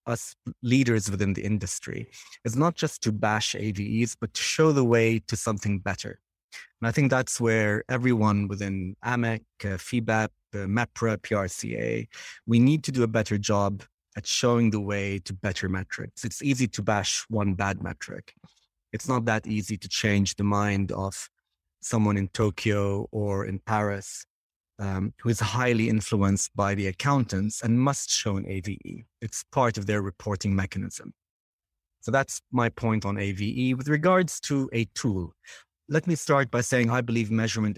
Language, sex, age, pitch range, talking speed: English, male, 30-49, 100-120 Hz, 170 wpm